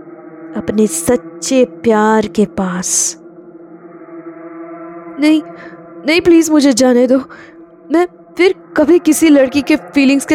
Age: 20-39